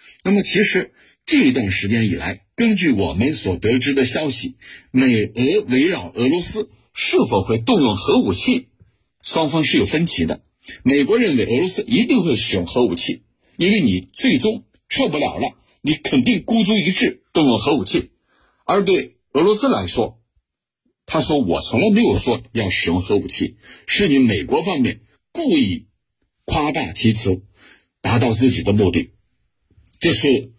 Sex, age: male, 60-79